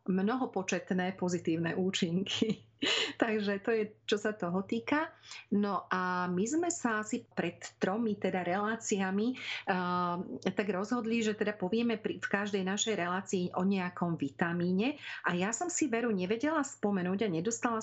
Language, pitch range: Slovak, 180-220 Hz